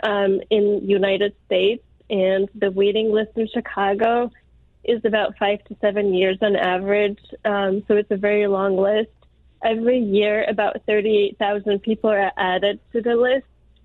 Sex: female